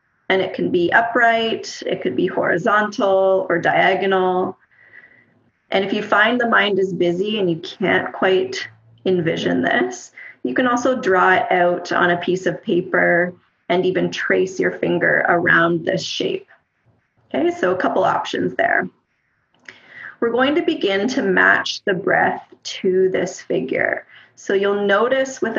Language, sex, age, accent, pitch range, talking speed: English, female, 30-49, American, 185-260 Hz, 150 wpm